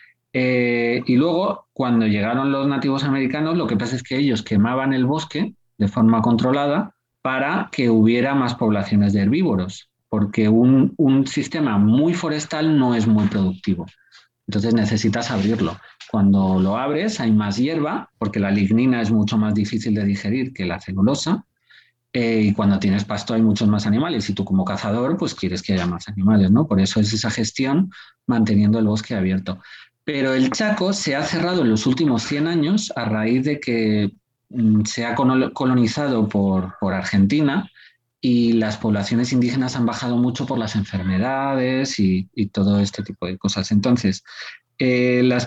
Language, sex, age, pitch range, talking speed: Spanish, male, 40-59, 105-135 Hz, 165 wpm